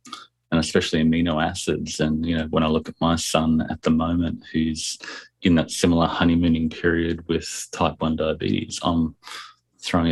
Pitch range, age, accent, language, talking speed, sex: 80-85 Hz, 30-49, Australian, English, 165 wpm, male